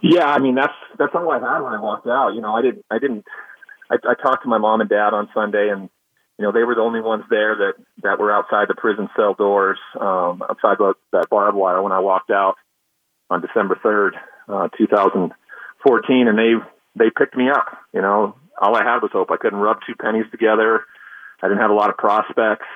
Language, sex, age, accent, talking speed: English, male, 40-59, American, 225 wpm